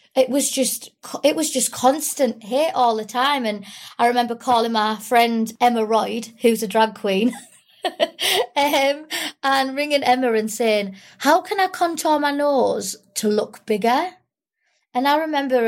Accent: British